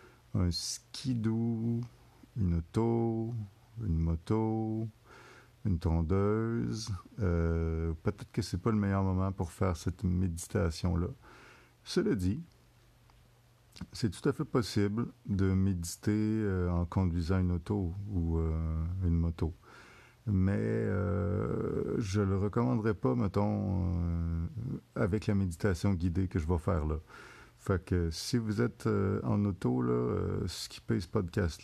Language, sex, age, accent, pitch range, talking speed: French, male, 50-69, French, 90-115 Hz, 135 wpm